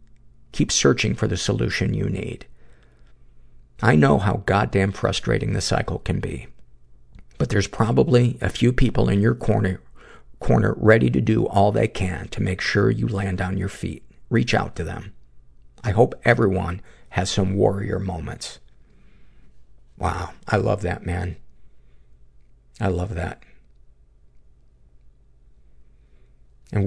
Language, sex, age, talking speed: English, male, 50-69, 135 wpm